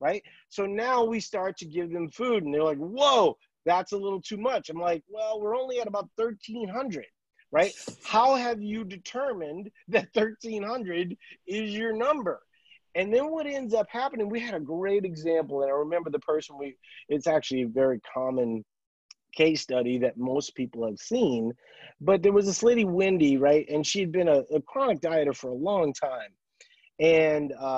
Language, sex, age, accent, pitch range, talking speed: English, male, 30-49, American, 155-220 Hz, 180 wpm